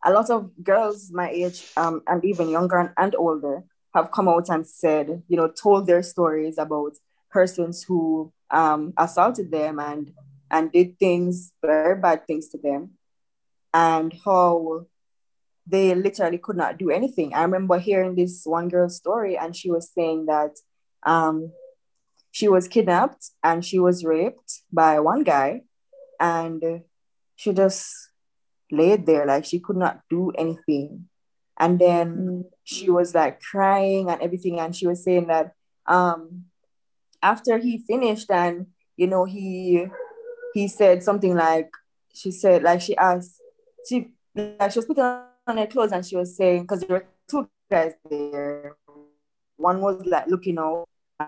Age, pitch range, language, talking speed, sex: 20-39, 160-195 Hz, English, 155 wpm, female